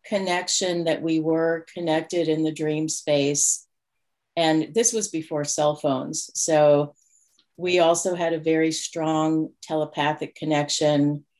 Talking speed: 125 wpm